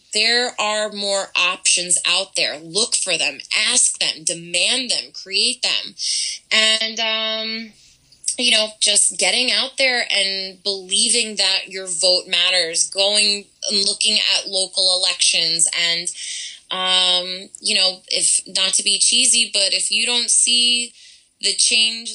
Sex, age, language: female, 20-39, English